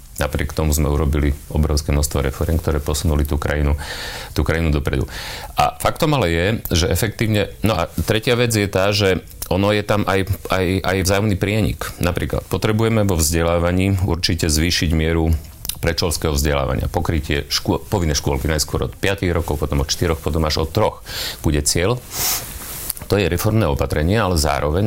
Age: 40-59